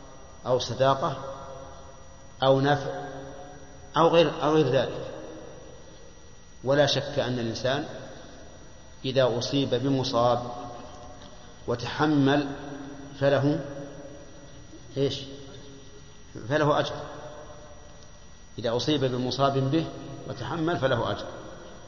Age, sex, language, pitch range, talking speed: 50-69, male, Arabic, 130-145 Hz, 75 wpm